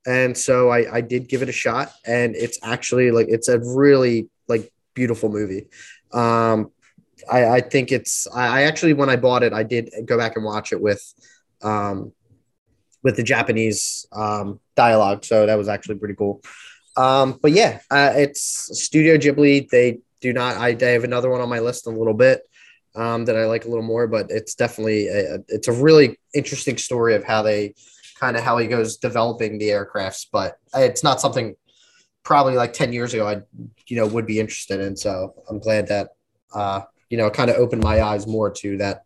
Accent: American